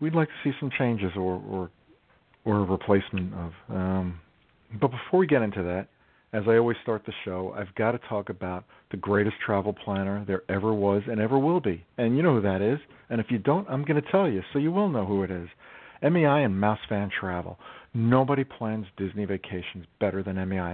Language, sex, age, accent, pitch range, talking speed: English, male, 50-69, American, 100-130 Hz, 215 wpm